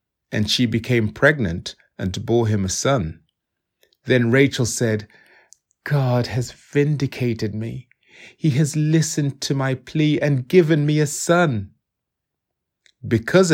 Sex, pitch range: male, 105-150 Hz